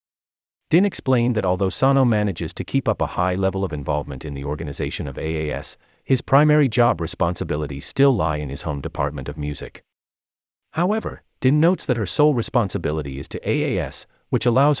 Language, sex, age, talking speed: English, male, 40-59, 175 wpm